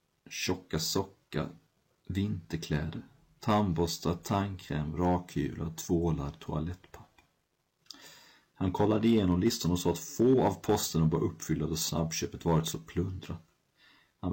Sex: male